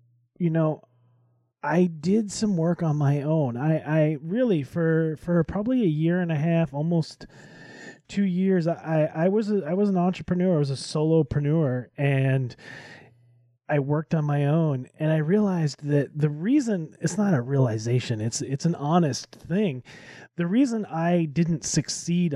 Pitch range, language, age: 135-170 Hz, English, 30-49